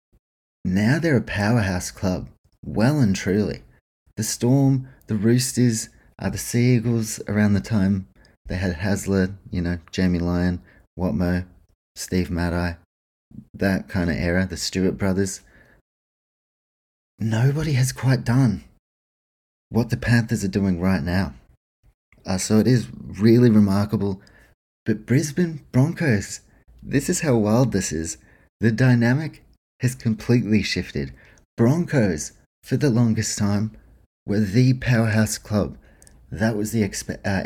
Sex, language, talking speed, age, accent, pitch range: male, English, 130 wpm, 30-49, Australian, 95-120 Hz